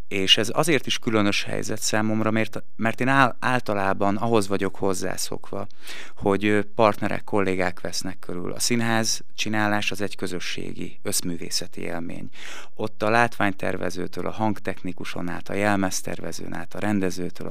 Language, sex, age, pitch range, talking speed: Hungarian, male, 30-49, 90-110 Hz, 125 wpm